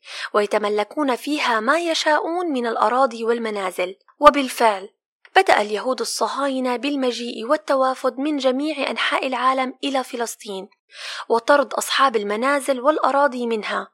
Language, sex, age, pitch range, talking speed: Arabic, female, 20-39, 225-280 Hz, 105 wpm